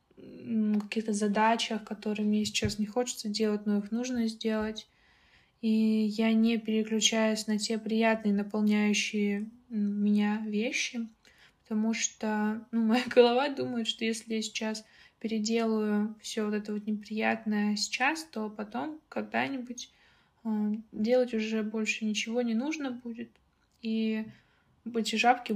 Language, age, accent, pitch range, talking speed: Russian, 20-39, native, 210-230 Hz, 120 wpm